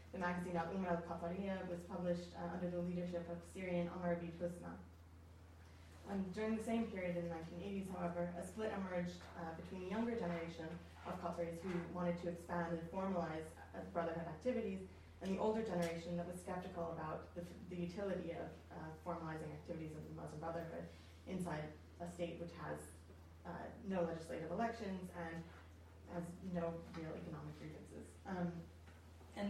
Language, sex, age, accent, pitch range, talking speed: English, female, 20-39, American, 165-185 Hz, 155 wpm